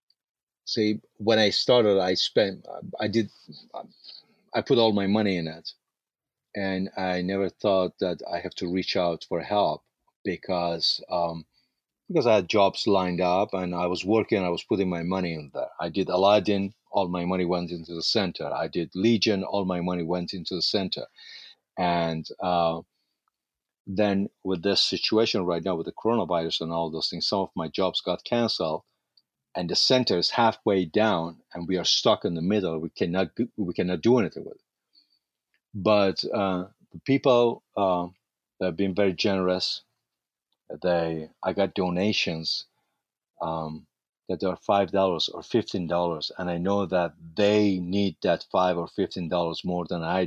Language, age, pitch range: English, 40-59, 85-100 Hz